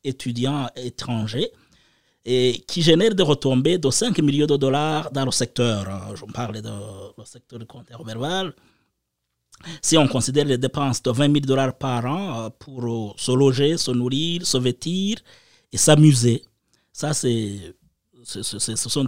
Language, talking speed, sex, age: French, 160 wpm, male, 30-49